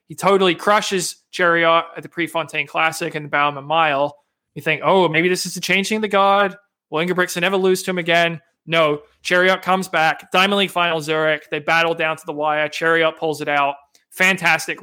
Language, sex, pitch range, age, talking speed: English, male, 160-190 Hz, 20-39, 200 wpm